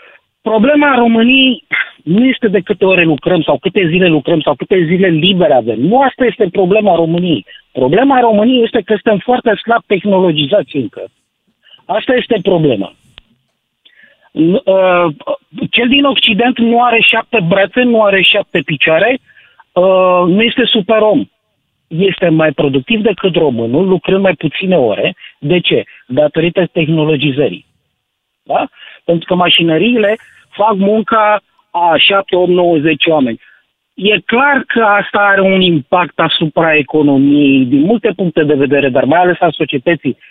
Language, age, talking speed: Romanian, 50-69, 140 wpm